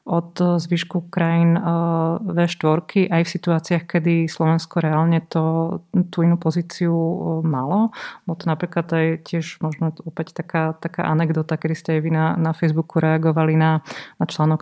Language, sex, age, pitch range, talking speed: Slovak, female, 30-49, 155-170 Hz, 150 wpm